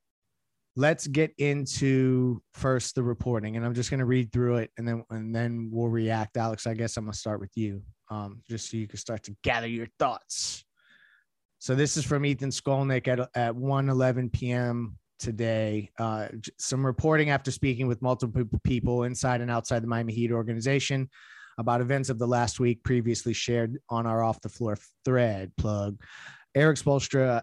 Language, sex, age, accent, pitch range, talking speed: English, male, 20-39, American, 115-130 Hz, 180 wpm